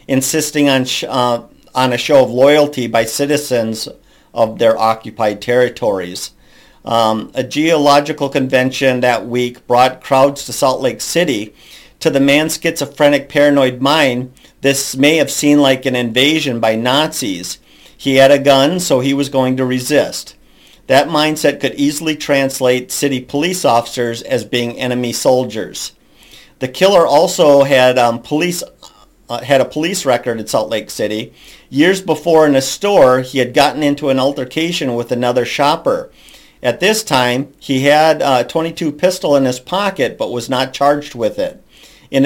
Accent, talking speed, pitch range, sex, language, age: American, 160 wpm, 125-145 Hz, male, English, 50-69